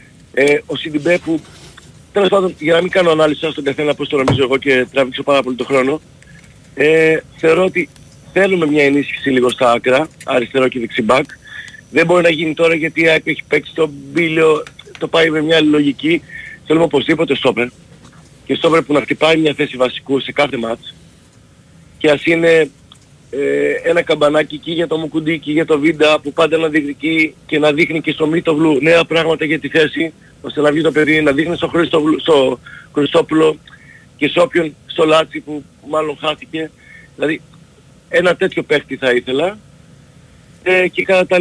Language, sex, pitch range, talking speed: Greek, male, 140-165 Hz, 175 wpm